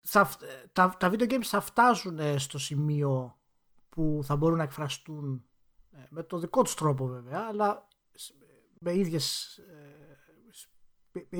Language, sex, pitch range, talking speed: Greek, male, 145-200 Hz, 115 wpm